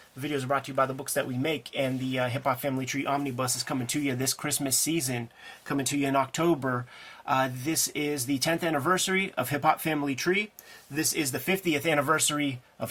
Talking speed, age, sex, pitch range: 220 wpm, 30-49, male, 130-150 Hz